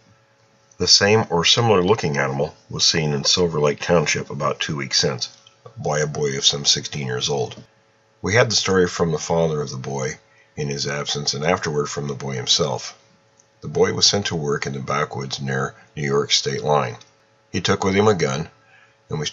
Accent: American